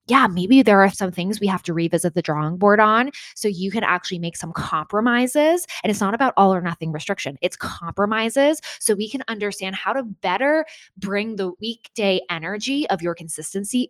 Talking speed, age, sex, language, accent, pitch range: 195 wpm, 20-39, female, English, American, 185-245 Hz